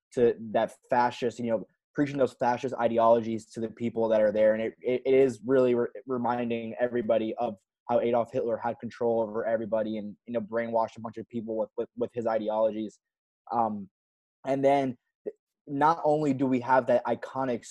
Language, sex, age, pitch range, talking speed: English, male, 20-39, 115-135 Hz, 185 wpm